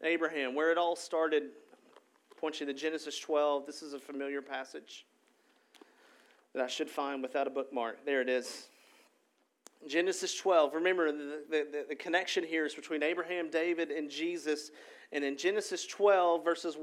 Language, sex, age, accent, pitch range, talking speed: English, male, 40-59, American, 155-200 Hz, 160 wpm